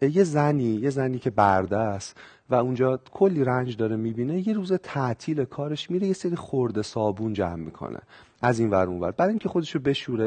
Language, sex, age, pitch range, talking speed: Persian, male, 40-59, 105-150 Hz, 185 wpm